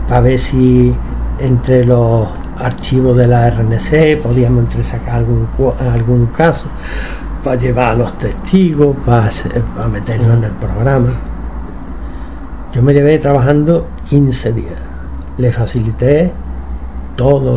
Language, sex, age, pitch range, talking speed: Spanish, male, 60-79, 100-135 Hz, 120 wpm